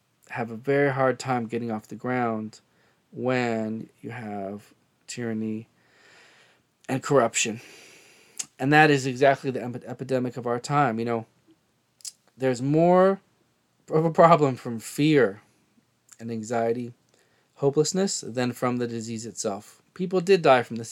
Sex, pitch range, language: male, 115-135 Hz, English